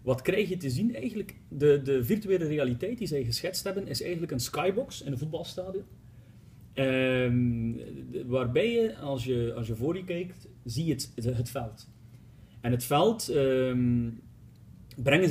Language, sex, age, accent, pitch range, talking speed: Dutch, male, 30-49, Dutch, 120-150 Hz, 160 wpm